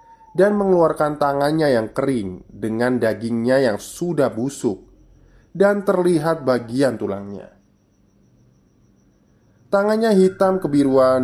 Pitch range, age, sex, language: 110-155 Hz, 20-39, male, Indonesian